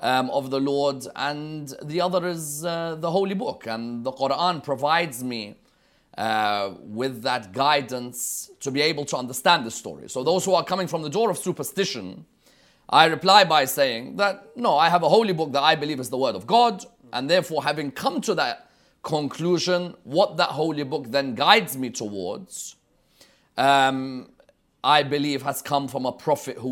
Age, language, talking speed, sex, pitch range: 30-49, English, 180 wpm, male, 120-170 Hz